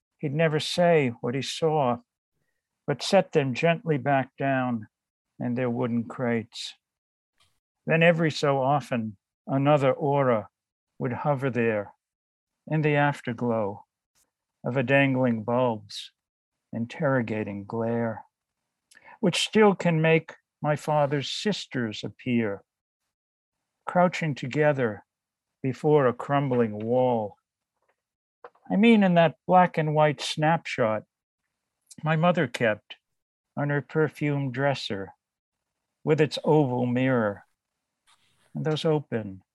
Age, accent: 60-79, American